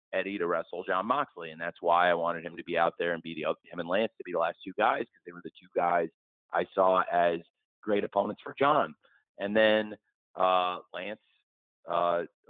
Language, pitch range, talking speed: English, 85-105 Hz, 215 wpm